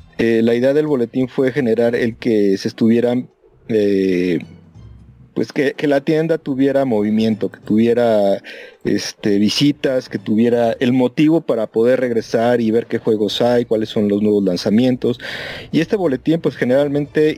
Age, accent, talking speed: 40-59, Mexican, 150 wpm